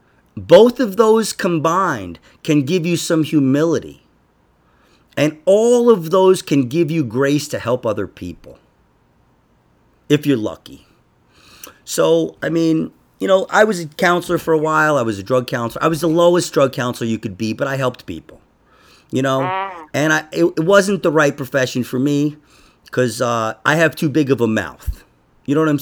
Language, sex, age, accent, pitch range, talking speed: English, male, 40-59, American, 115-175 Hz, 185 wpm